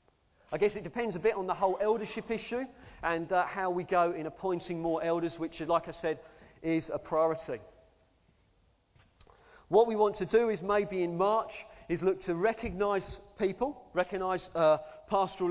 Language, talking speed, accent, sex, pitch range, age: English, 170 wpm, British, male, 160-205 Hz, 40-59